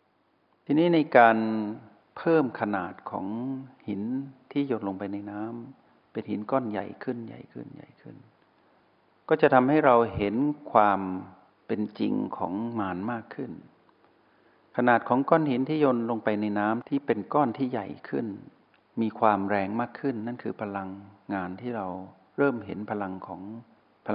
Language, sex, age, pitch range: Thai, male, 60-79, 100-125 Hz